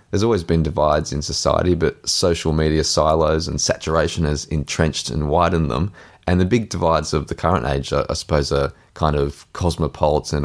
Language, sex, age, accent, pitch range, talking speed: English, male, 20-39, Australian, 75-90 Hz, 180 wpm